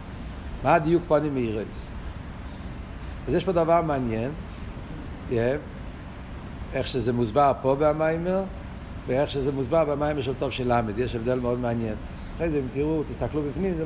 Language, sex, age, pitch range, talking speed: Hebrew, male, 60-79, 110-160 Hz, 145 wpm